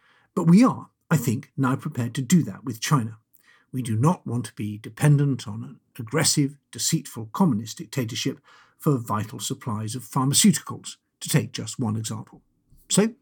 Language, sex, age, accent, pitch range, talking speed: English, male, 50-69, British, 115-145 Hz, 165 wpm